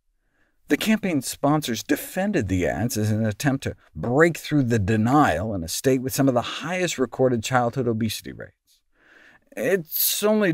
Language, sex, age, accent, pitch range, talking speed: English, male, 50-69, American, 110-155 Hz, 160 wpm